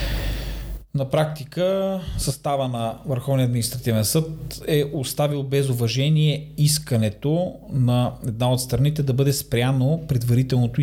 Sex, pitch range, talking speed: male, 120-155 Hz, 110 wpm